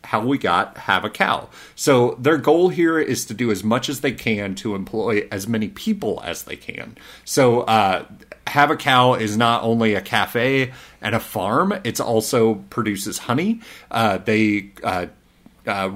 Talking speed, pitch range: 175 wpm, 105-125 Hz